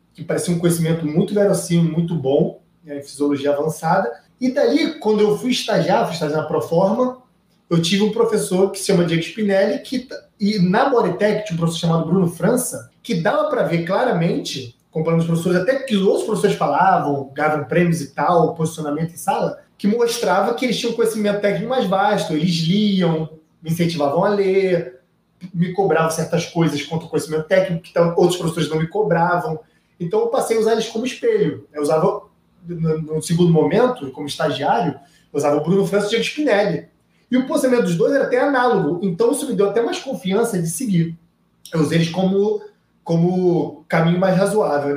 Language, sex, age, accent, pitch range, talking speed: Portuguese, male, 20-39, Brazilian, 160-210 Hz, 185 wpm